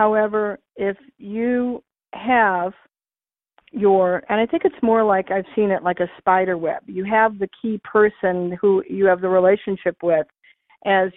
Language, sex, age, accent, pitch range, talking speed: English, female, 50-69, American, 180-215 Hz, 160 wpm